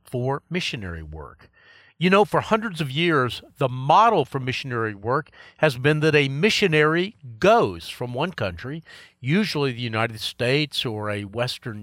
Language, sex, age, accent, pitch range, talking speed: English, male, 50-69, American, 120-185 Hz, 150 wpm